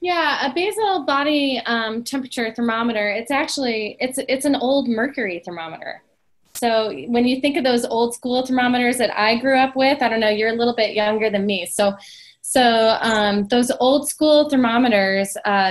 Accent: American